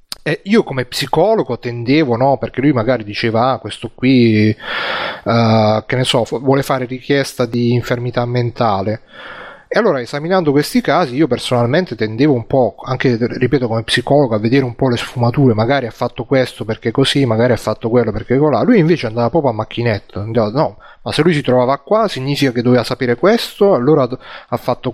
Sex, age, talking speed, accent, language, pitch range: male, 30-49, 185 wpm, native, Italian, 120-150 Hz